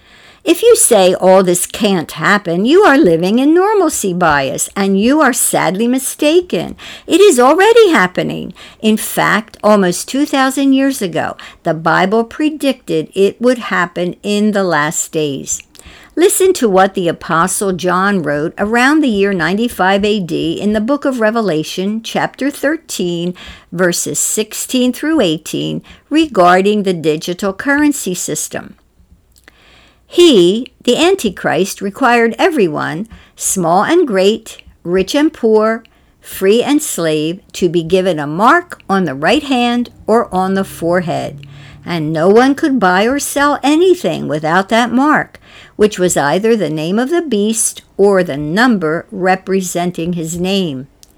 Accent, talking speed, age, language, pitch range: American, 135 wpm, 60-79, English, 175-255 Hz